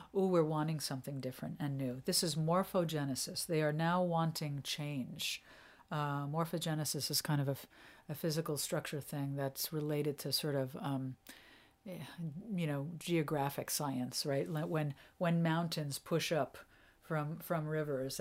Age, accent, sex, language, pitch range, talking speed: 50-69, American, female, English, 145-180 Hz, 145 wpm